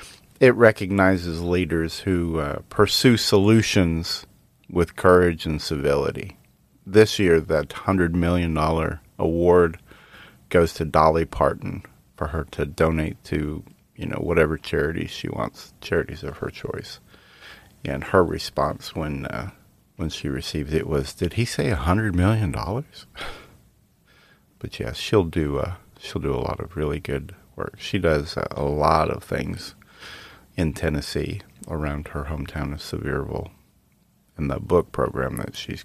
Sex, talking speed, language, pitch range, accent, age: male, 150 wpm, English, 75-100 Hz, American, 40-59